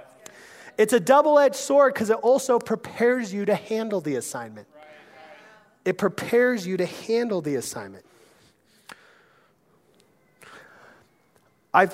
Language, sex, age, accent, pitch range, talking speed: English, male, 30-49, American, 175-235 Hz, 110 wpm